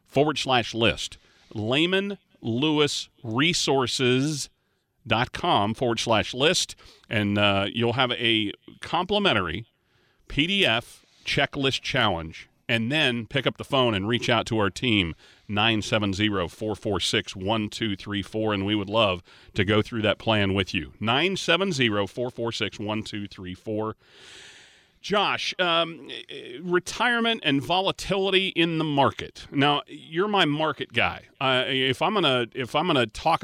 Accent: American